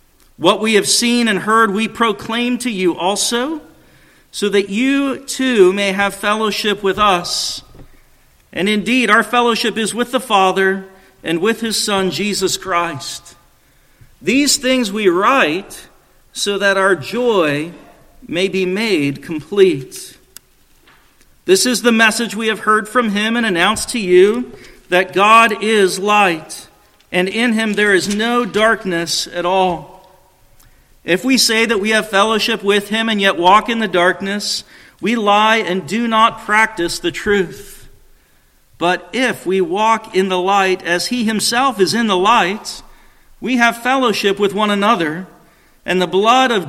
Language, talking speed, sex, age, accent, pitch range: English, 155 wpm, male, 50-69, American, 180-225 Hz